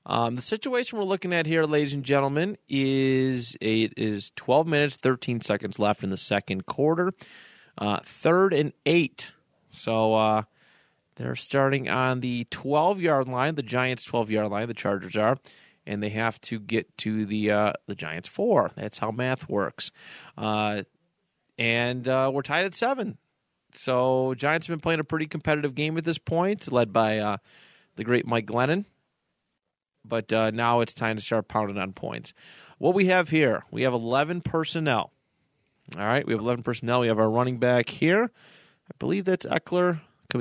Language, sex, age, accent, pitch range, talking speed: English, male, 30-49, American, 110-155 Hz, 175 wpm